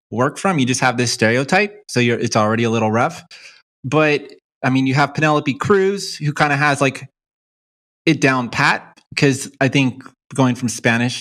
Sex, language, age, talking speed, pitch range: male, English, 20-39, 185 wpm, 120-155 Hz